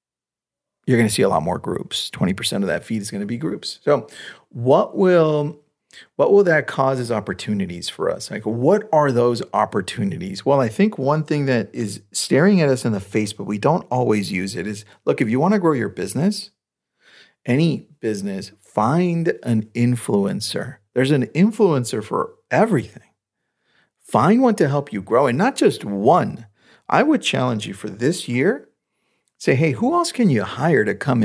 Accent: American